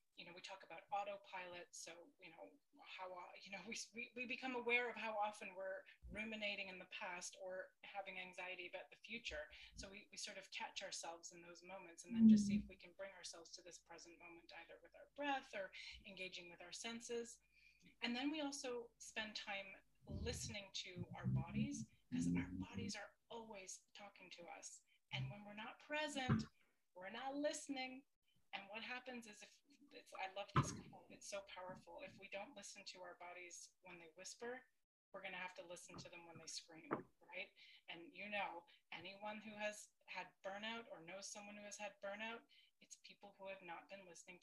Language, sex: English, female